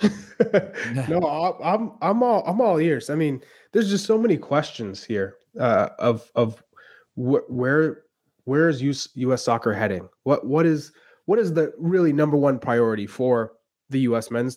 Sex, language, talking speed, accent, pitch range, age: male, English, 170 wpm, American, 115-145 Hz, 20-39